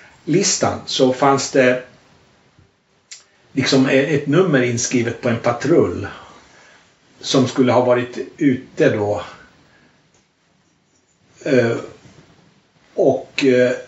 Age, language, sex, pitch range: 60-79, Swedish, male, 120-135 Hz